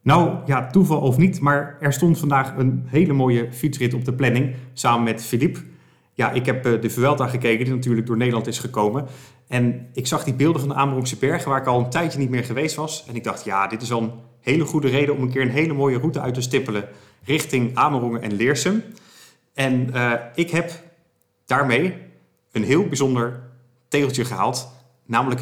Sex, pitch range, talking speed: male, 120-145 Hz, 200 wpm